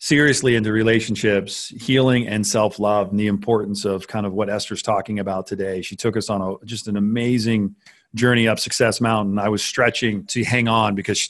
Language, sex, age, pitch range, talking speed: English, male, 40-59, 105-120 Hz, 195 wpm